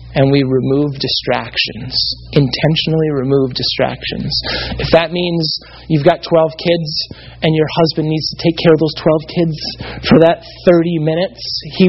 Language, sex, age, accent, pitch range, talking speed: English, male, 30-49, American, 120-170 Hz, 150 wpm